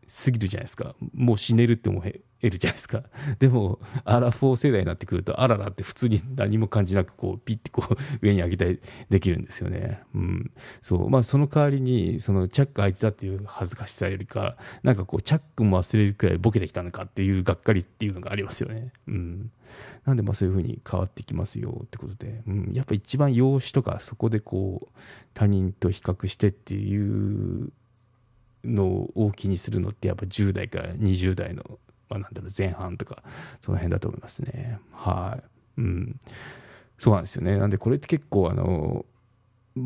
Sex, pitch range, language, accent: male, 100-125 Hz, Japanese, native